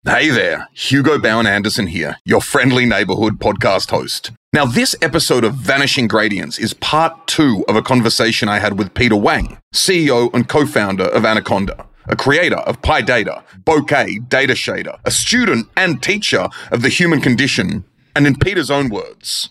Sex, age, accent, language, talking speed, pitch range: male, 30-49, Australian, English, 165 wpm, 125-175 Hz